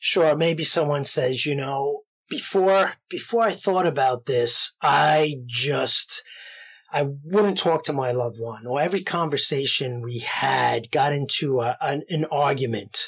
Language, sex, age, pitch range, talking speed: English, male, 30-49, 155-250 Hz, 145 wpm